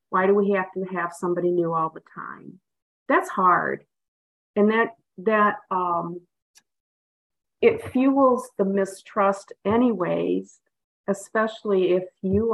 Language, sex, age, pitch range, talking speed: English, female, 50-69, 170-205 Hz, 120 wpm